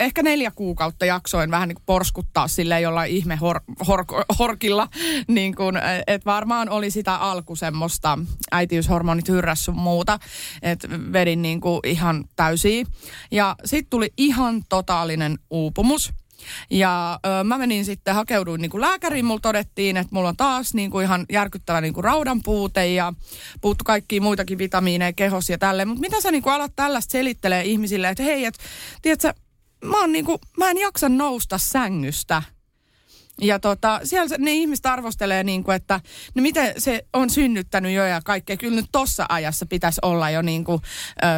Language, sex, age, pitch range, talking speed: Finnish, female, 30-49, 180-235 Hz, 155 wpm